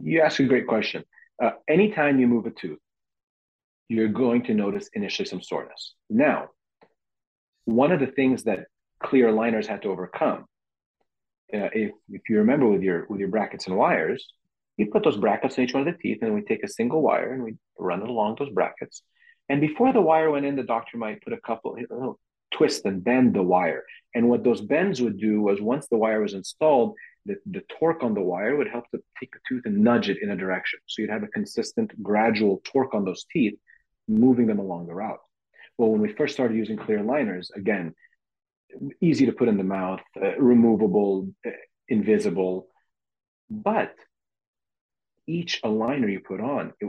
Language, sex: English, male